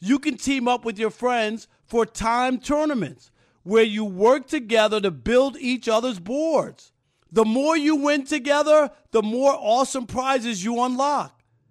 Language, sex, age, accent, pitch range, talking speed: English, male, 50-69, American, 195-270 Hz, 155 wpm